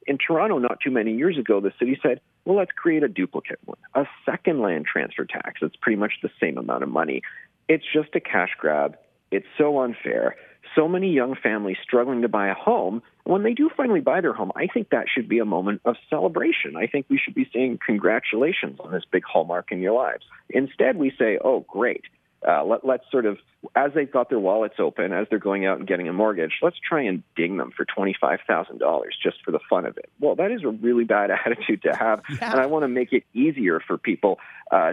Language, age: English, 40-59